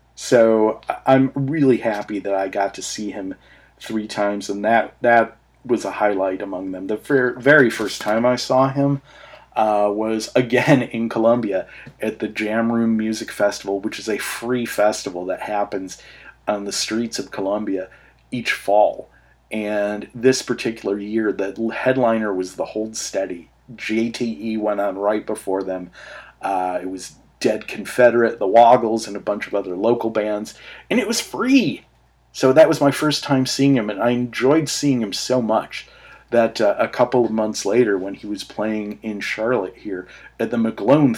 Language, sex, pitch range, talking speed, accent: English, male, 100-120 Hz, 170 wpm, American